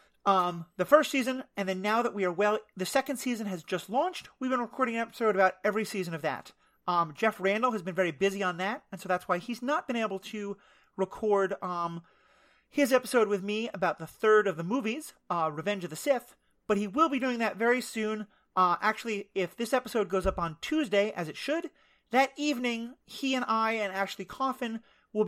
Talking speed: 215 wpm